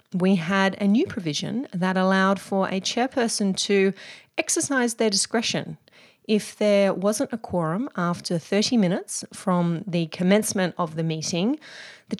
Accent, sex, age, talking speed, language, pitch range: Australian, female, 30-49, 145 wpm, English, 180-230 Hz